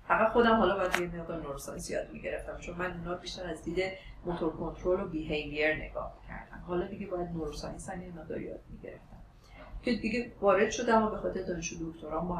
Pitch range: 170-215 Hz